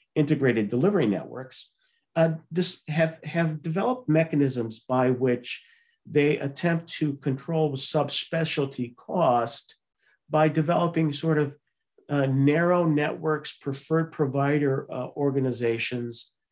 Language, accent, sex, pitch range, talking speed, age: English, American, male, 115-150 Hz, 105 wpm, 50-69